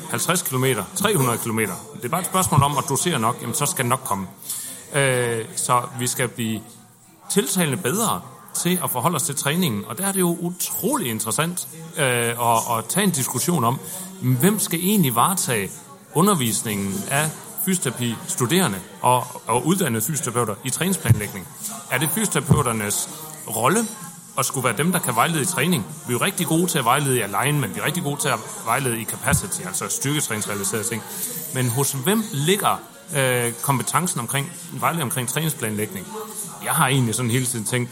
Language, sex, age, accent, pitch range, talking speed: Danish, male, 30-49, native, 120-175 Hz, 175 wpm